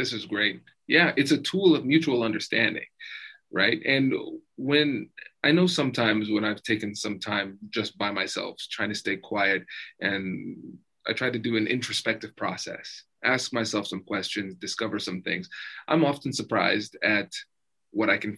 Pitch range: 110-145 Hz